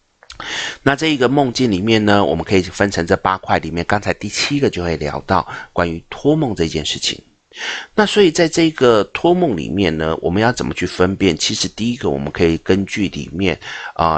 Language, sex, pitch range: Chinese, male, 85-115 Hz